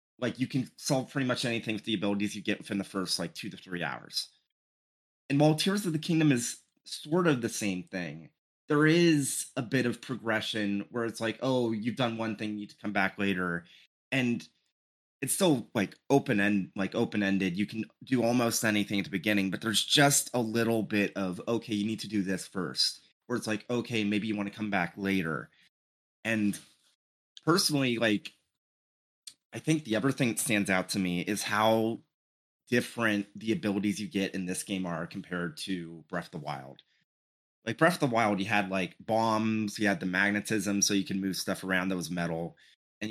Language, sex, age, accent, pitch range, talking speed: English, male, 30-49, American, 95-120 Hz, 205 wpm